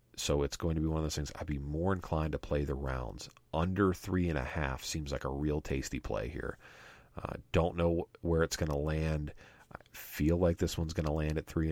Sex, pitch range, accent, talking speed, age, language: male, 75-85 Hz, American, 225 wpm, 40-59, English